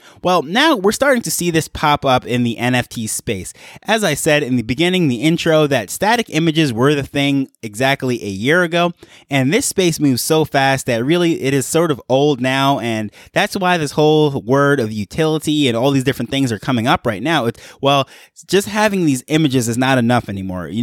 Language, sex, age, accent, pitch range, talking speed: English, male, 20-39, American, 125-155 Hz, 210 wpm